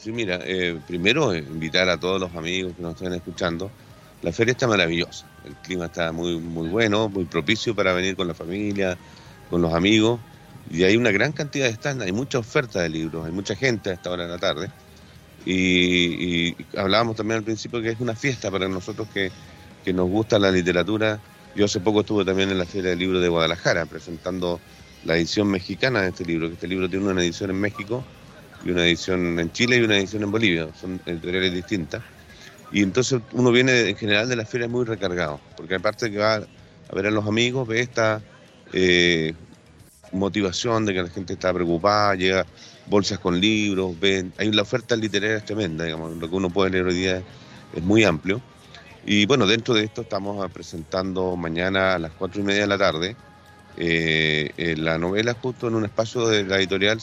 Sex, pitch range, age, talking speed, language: male, 90-110 Hz, 40-59, 200 wpm, Spanish